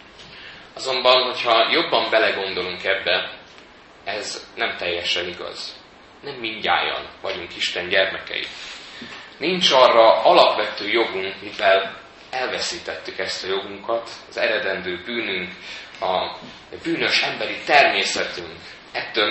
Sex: male